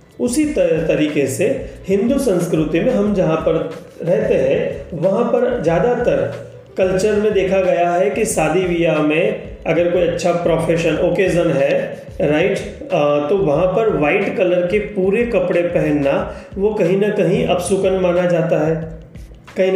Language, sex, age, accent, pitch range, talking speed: Hindi, male, 30-49, native, 155-190 Hz, 150 wpm